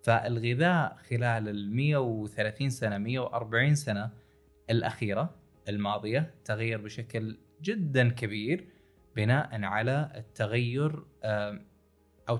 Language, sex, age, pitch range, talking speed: Arabic, male, 20-39, 105-135 Hz, 75 wpm